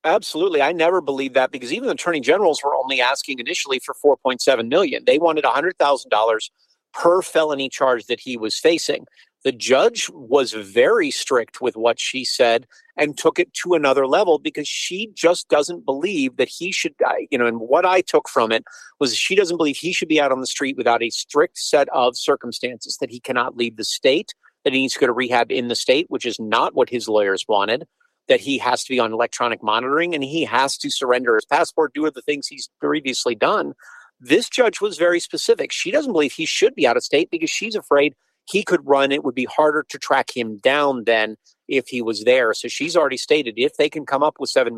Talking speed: 220 wpm